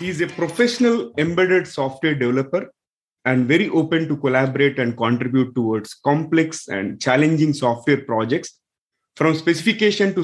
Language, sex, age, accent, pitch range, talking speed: English, male, 30-49, Indian, 135-195 Hz, 135 wpm